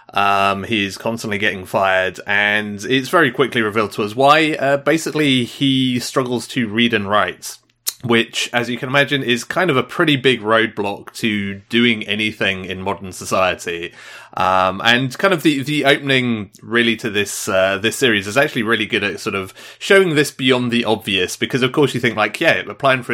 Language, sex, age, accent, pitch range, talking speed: English, male, 30-49, British, 105-135 Hz, 190 wpm